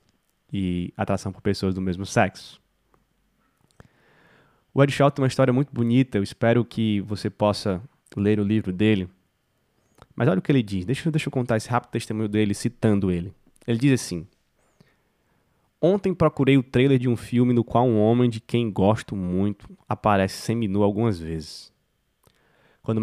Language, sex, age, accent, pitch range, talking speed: Portuguese, male, 20-39, Brazilian, 105-125 Hz, 165 wpm